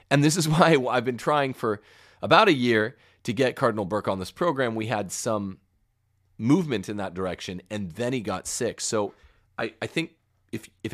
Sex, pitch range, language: male, 95-125 Hz, English